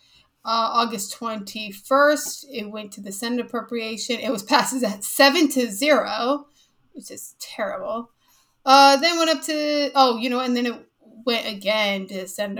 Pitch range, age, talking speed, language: 200-270 Hz, 20-39, 170 wpm, English